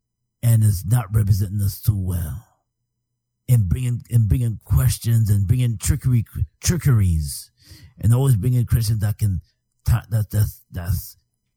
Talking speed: 130 wpm